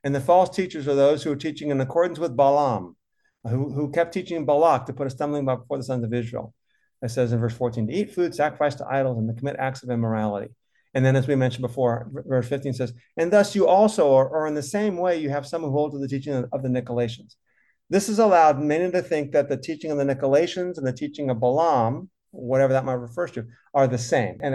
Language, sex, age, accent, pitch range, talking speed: English, male, 50-69, American, 125-160 Hz, 250 wpm